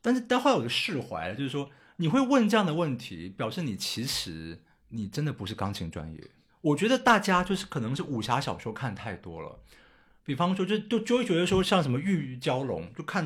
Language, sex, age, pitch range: Chinese, male, 50-69, 115-180 Hz